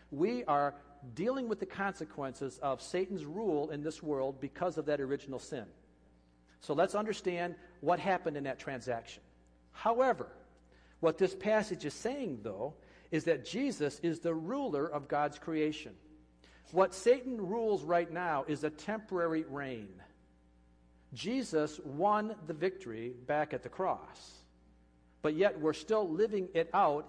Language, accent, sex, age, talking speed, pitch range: English, American, male, 50-69, 145 wpm, 130-185 Hz